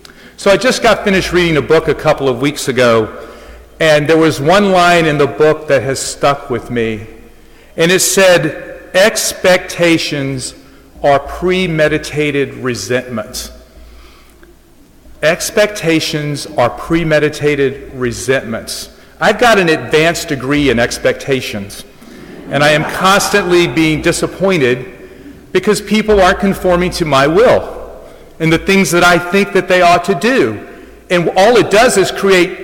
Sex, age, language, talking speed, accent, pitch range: male, 40-59, English, 135 wpm, American, 145-195 Hz